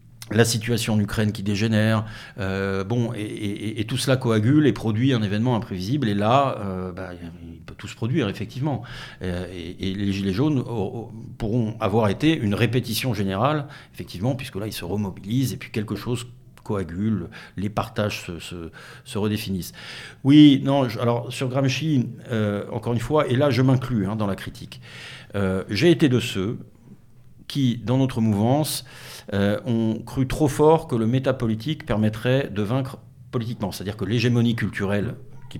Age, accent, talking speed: 60-79, French, 165 wpm